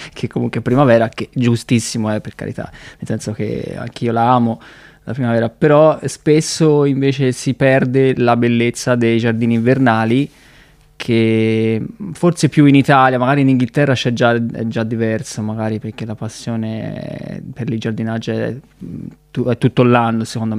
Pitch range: 115-140 Hz